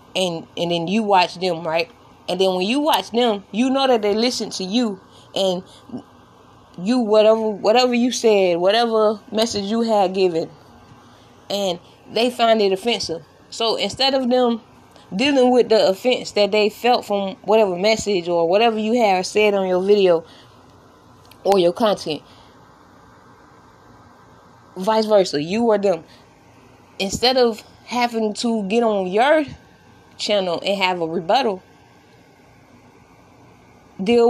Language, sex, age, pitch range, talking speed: English, female, 20-39, 180-230 Hz, 140 wpm